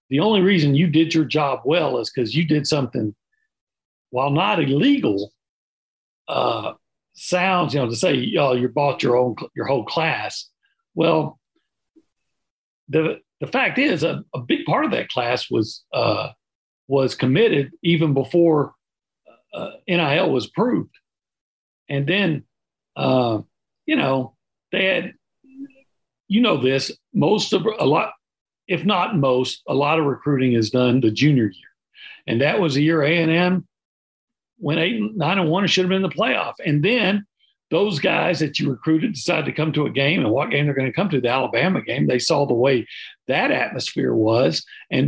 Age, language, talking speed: 50-69, English, 175 wpm